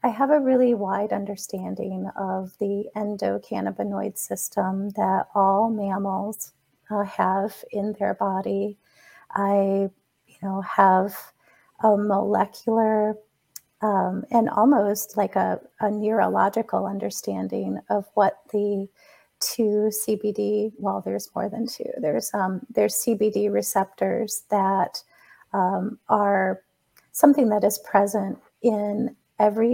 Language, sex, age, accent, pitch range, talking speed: English, female, 30-49, American, 195-225 Hz, 115 wpm